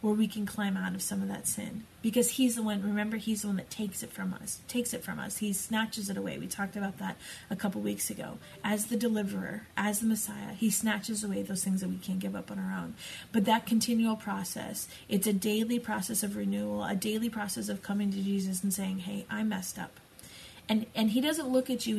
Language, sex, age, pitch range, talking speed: English, female, 30-49, 195-220 Hz, 240 wpm